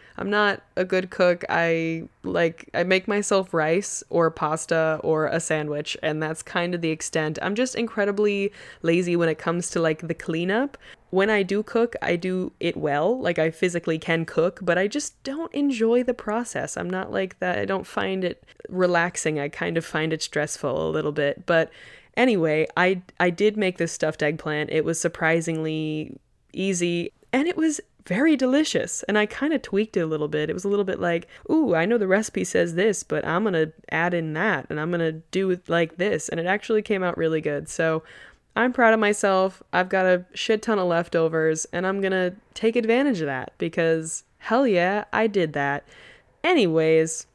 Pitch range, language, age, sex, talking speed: 160-205 Hz, English, 20-39, female, 200 wpm